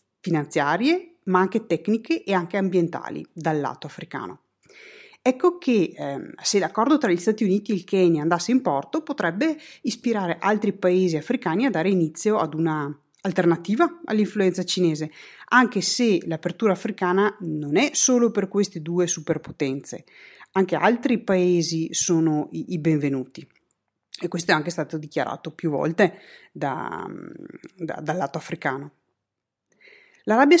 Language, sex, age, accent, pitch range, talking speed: Italian, female, 30-49, native, 165-235 Hz, 135 wpm